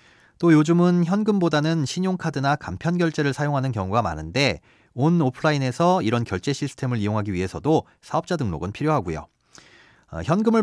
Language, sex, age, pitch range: Korean, male, 30-49, 115-165 Hz